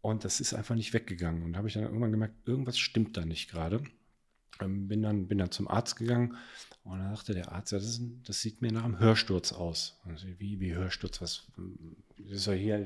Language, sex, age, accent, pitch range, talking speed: German, male, 40-59, German, 95-115 Hz, 225 wpm